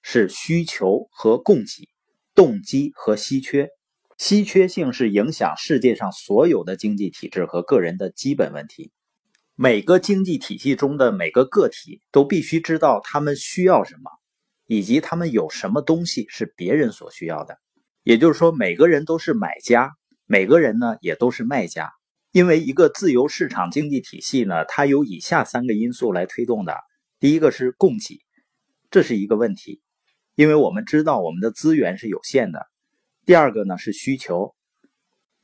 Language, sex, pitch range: Chinese, male, 120-185 Hz